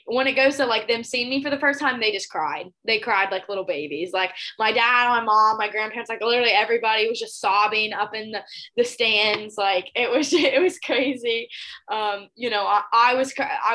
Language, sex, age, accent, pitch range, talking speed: English, female, 10-29, American, 205-270 Hz, 225 wpm